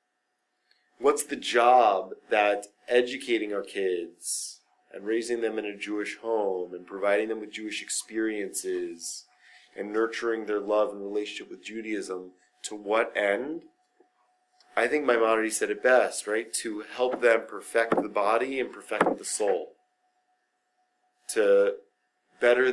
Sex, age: male, 30-49